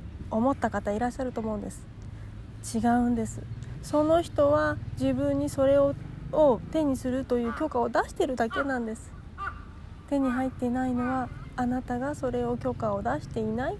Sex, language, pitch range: female, Japanese, 220-285 Hz